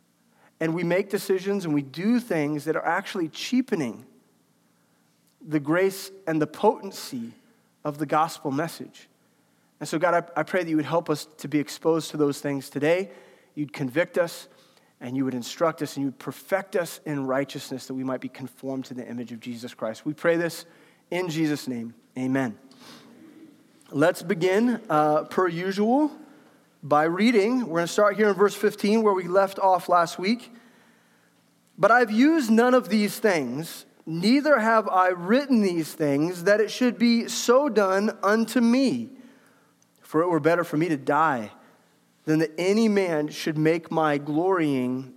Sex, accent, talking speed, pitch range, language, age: male, American, 175 wpm, 150-220 Hz, English, 40-59